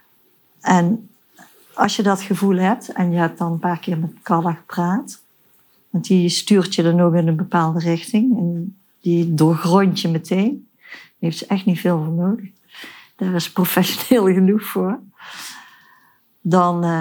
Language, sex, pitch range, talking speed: Dutch, female, 165-190 Hz, 160 wpm